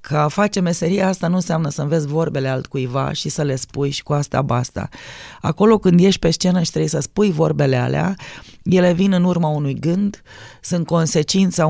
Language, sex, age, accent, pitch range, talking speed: Romanian, female, 20-39, native, 140-180 Hz, 190 wpm